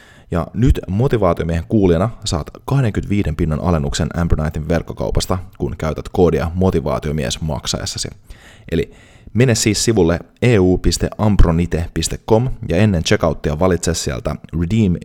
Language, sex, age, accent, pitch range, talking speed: Finnish, male, 30-49, native, 85-105 Hz, 105 wpm